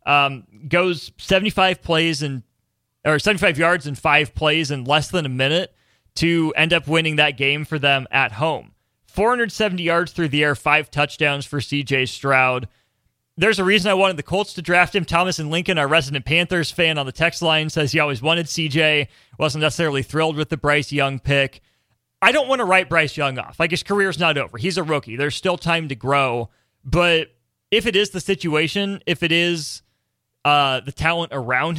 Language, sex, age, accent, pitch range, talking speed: English, male, 30-49, American, 140-175 Hz, 195 wpm